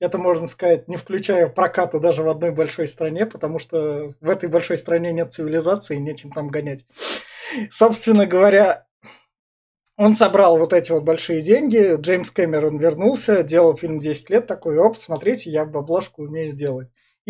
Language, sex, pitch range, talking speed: Russian, male, 155-200 Hz, 155 wpm